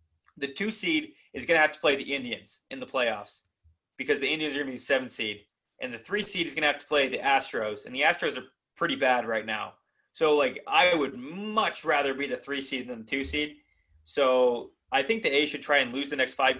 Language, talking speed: English, 255 wpm